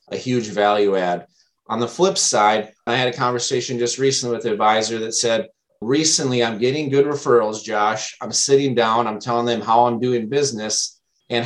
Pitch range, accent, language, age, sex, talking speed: 110-125 Hz, American, English, 30-49, male, 190 wpm